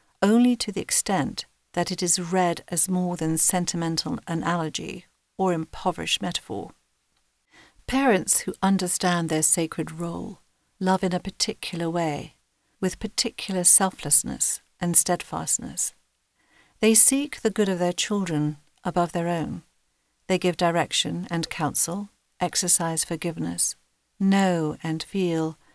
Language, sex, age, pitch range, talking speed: English, female, 50-69, 160-185 Hz, 120 wpm